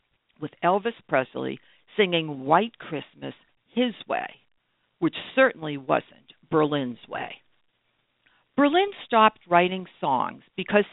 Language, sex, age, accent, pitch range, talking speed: English, female, 60-79, American, 165-230 Hz, 100 wpm